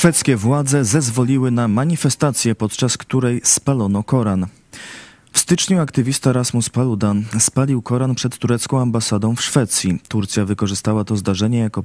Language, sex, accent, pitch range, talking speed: Polish, male, native, 105-125 Hz, 130 wpm